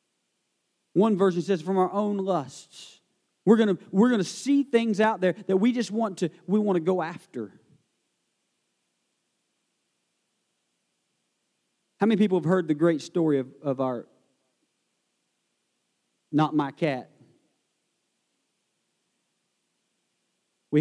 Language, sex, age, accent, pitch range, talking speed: English, male, 40-59, American, 160-185 Hz, 110 wpm